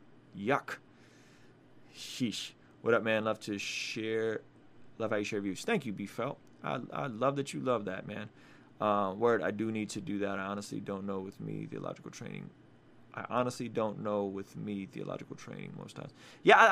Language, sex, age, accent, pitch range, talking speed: English, male, 20-39, American, 100-125 Hz, 190 wpm